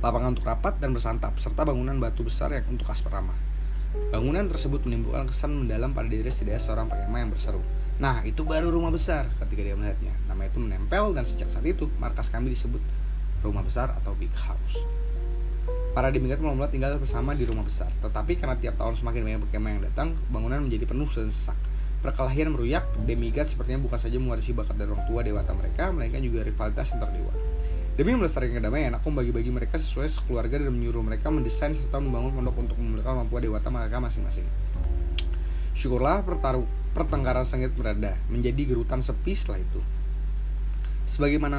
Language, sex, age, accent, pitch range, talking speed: Indonesian, male, 20-39, native, 100-130 Hz, 175 wpm